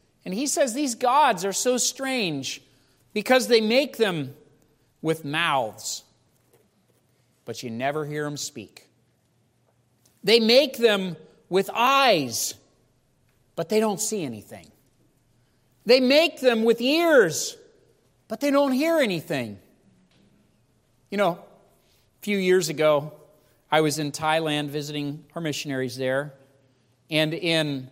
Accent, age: American, 40-59